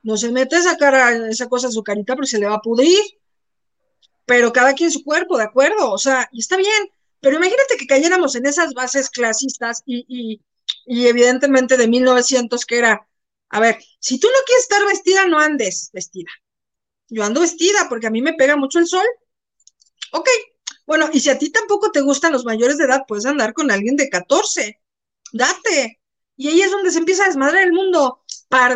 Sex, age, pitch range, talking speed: female, 40-59, 235-330 Hz, 200 wpm